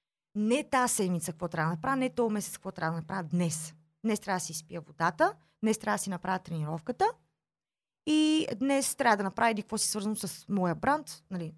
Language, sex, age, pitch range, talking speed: Bulgarian, female, 30-49, 165-235 Hz, 205 wpm